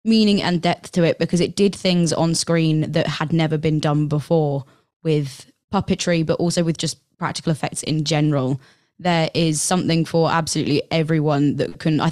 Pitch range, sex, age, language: 155-190 Hz, female, 20-39, English